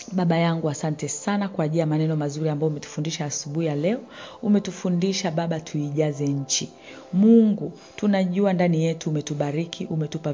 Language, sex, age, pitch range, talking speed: Swahili, female, 40-59, 150-190 Hz, 135 wpm